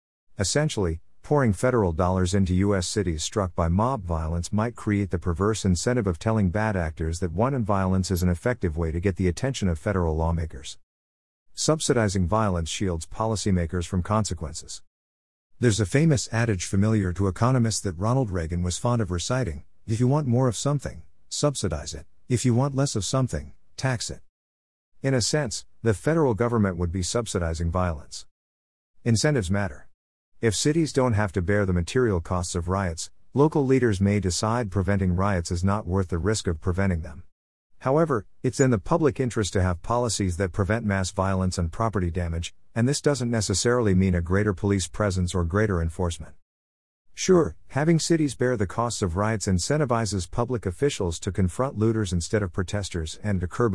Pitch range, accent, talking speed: 90-115 Hz, American, 175 wpm